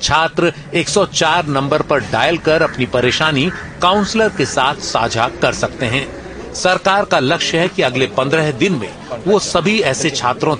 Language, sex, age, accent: Hindi, male, 40-59, native